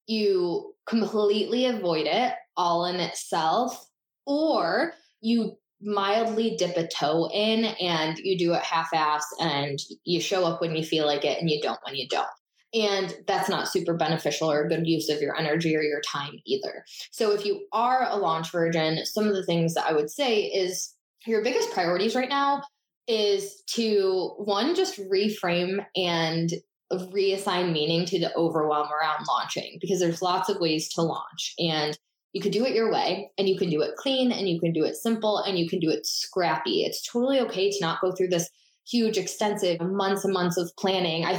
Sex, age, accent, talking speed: female, 10-29, American, 195 wpm